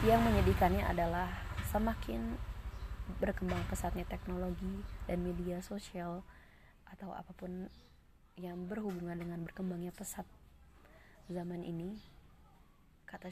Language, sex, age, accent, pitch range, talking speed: Indonesian, female, 20-39, native, 165-185 Hz, 90 wpm